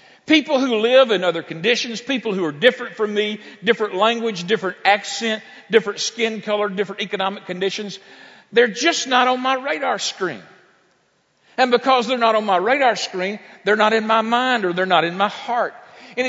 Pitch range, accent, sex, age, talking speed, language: 185-245 Hz, American, male, 50-69, 180 wpm, English